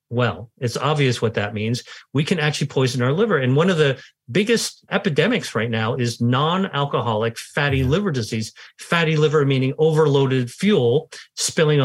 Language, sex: English, male